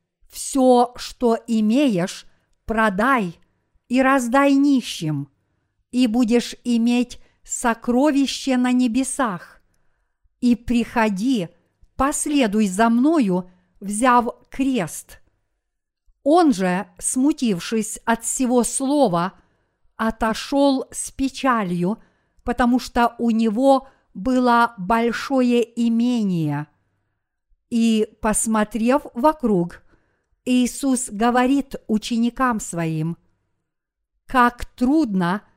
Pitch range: 210-260 Hz